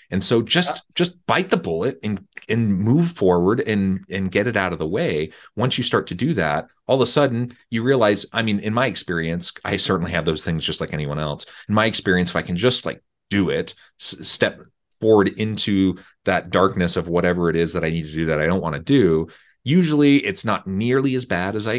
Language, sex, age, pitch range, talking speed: English, male, 30-49, 85-110 Hz, 230 wpm